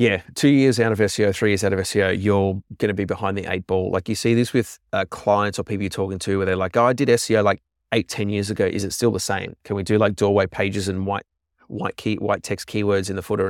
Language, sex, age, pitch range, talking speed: English, male, 30-49, 95-115 Hz, 285 wpm